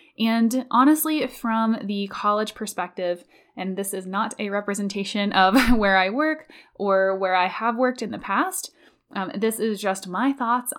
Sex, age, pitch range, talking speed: female, 10-29, 190-255 Hz, 165 wpm